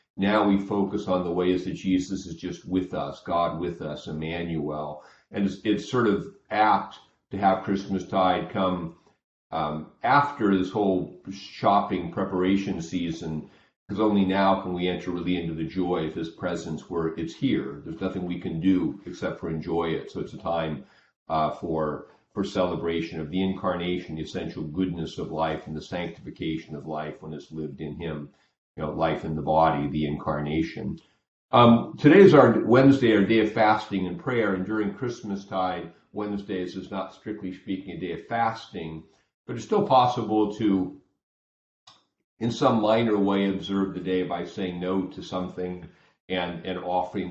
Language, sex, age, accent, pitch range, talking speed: English, male, 40-59, American, 85-100 Hz, 170 wpm